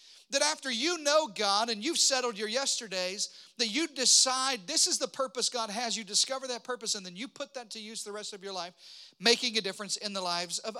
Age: 40-59